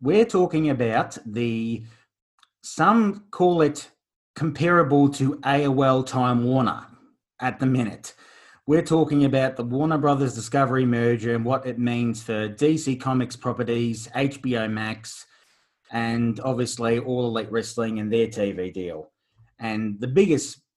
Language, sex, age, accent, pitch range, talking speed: English, male, 30-49, Australian, 115-135 Hz, 130 wpm